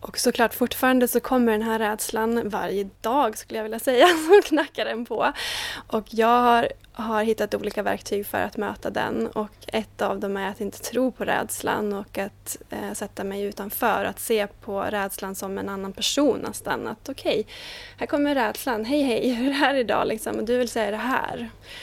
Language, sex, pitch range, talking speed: Swedish, female, 210-240 Hz, 200 wpm